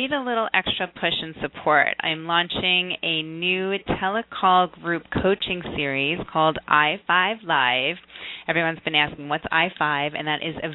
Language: English